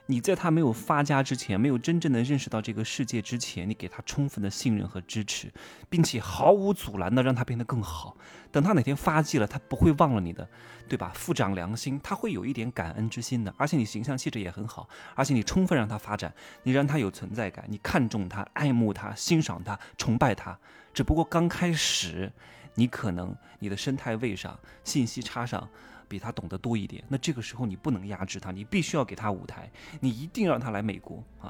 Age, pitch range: 20-39, 105-150 Hz